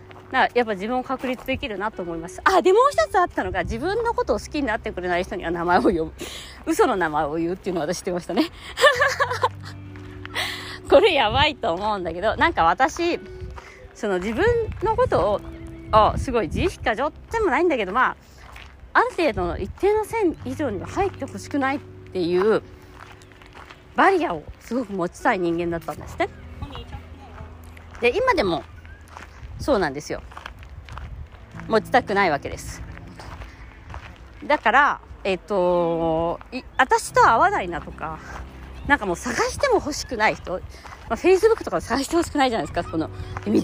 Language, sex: Japanese, female